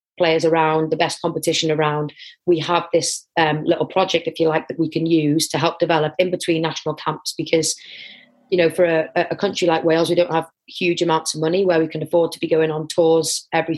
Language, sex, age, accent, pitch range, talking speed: English, female, 30-49, British, 160-175 Hz, 225 wpm